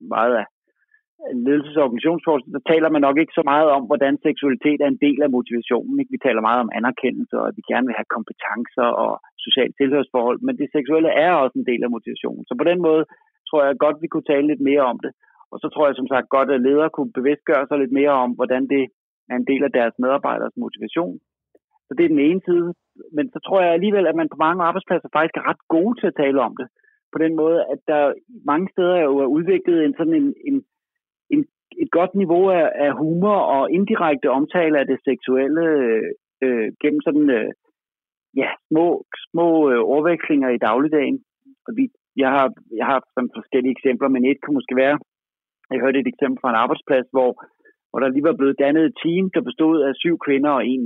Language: Danish